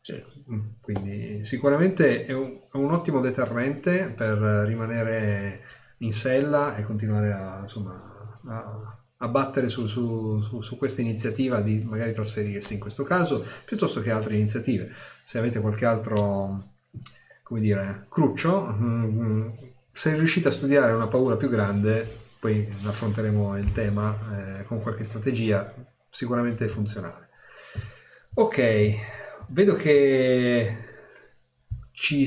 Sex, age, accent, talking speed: male, 30-49, native, 115 wpm